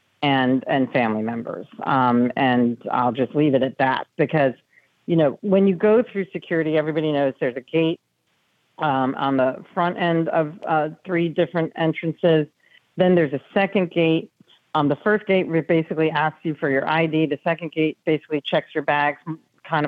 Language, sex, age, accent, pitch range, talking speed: English, female, 50-69, American, 145-185 Hz, 175 wpm